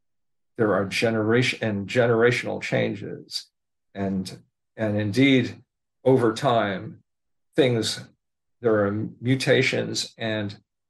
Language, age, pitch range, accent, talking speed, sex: English, 50-69, 100-120 Hz, American, 90 wpm, male